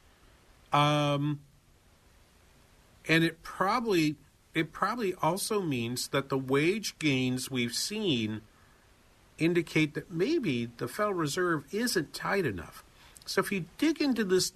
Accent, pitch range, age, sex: American, 130-185 Hz, 50-69, male